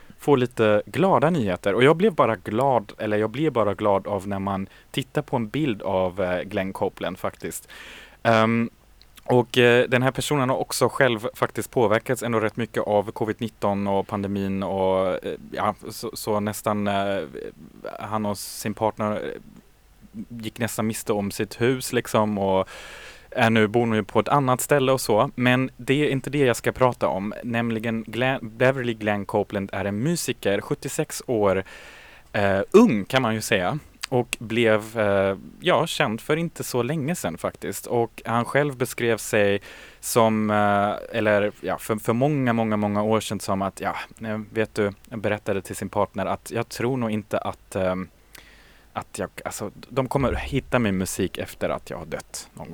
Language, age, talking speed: Swedish, 20-39, 175 wpm